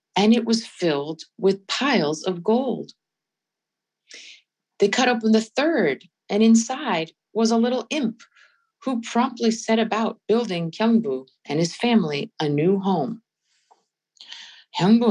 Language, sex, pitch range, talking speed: English, female, 155-225 Hz, 125 wpm